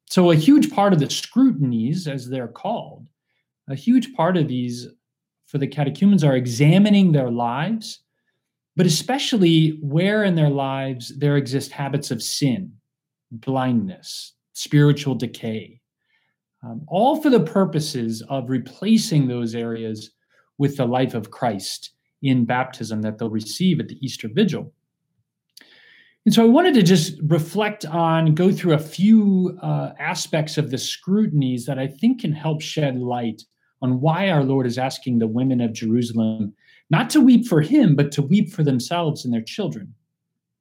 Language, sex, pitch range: English, male, 125-180 Hz